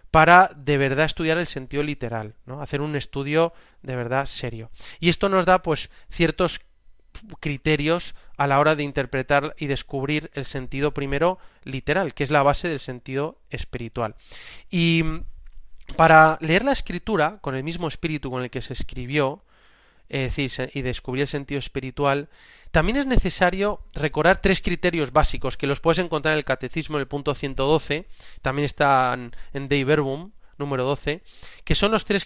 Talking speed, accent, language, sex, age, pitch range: 160 wpm, Spanish, Spanish, male, 30-49, 135-170 Hz